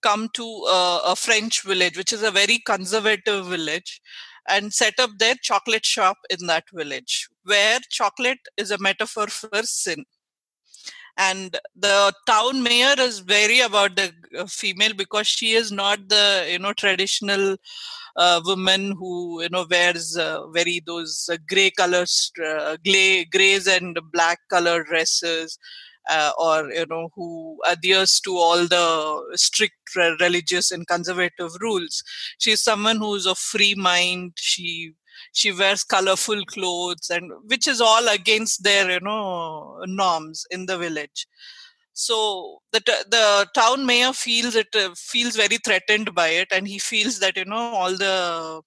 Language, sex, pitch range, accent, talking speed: English, female, 175-220 Hz, Indian, 150 wpm